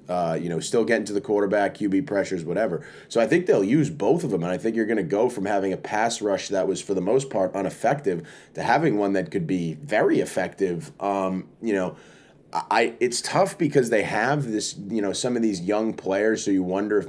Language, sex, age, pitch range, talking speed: English, male, 20-39, 95-105 Hz, 235 wpm